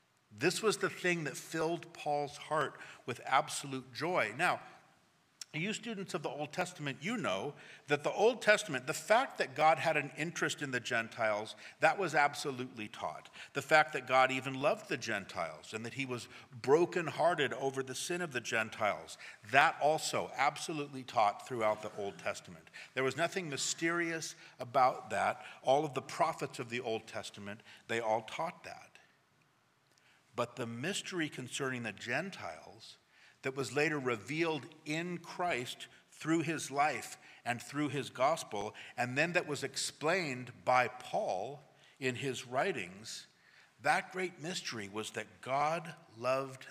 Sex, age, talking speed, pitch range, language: male, 50-69, 155 wpm, 125-165 Hz, English